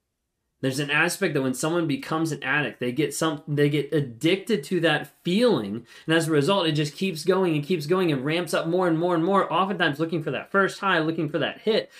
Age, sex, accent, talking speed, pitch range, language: 30-49, male, American, 235 wpm, 145-180 Hz, English